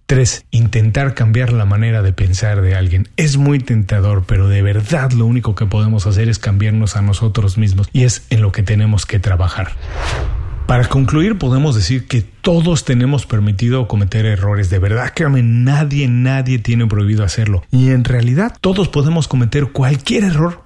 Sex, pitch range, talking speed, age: male, 105-135 Hz, 170 wpm, 40-59